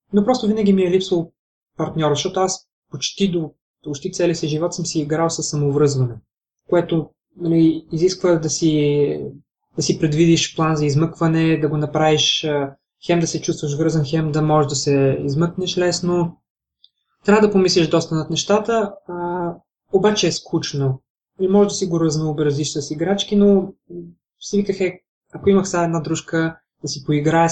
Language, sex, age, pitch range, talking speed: Bulgarian, male, 20-39, 150-175 Hz, 165 wpm